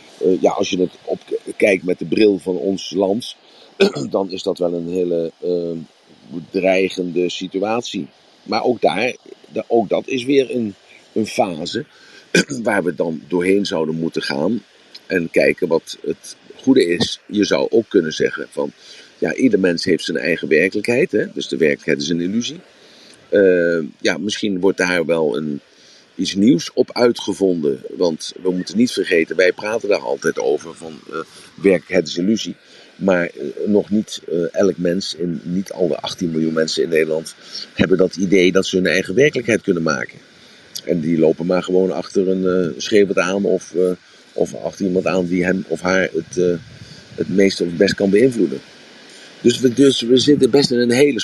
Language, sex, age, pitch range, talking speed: Dutch, male, 50-69, 90-120 Hz, 180 wpm